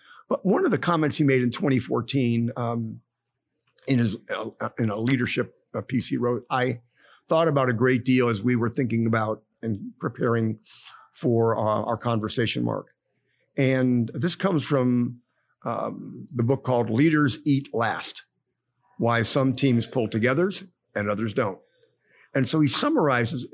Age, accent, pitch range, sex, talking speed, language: 50-69, American, 115-135 Hz, male, 155 wpm, English